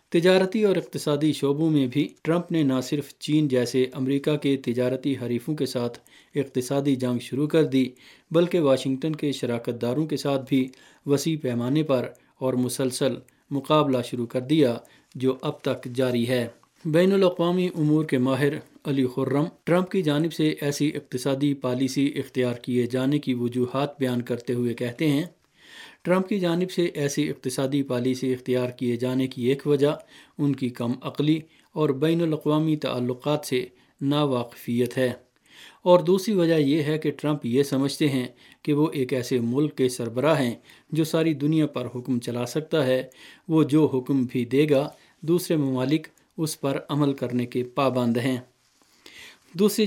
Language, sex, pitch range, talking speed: Urdu, male, 130-155 Hz, 160 wpm